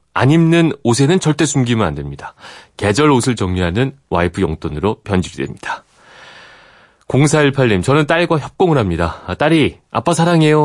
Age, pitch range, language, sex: 30-49, 95-140 Hz, Korean, male